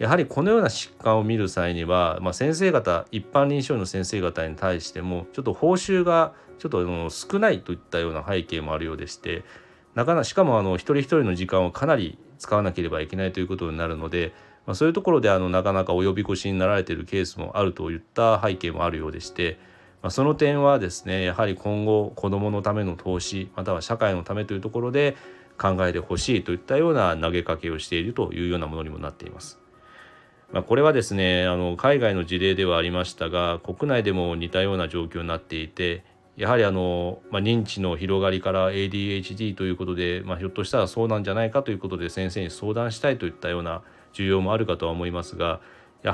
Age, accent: 30-49, native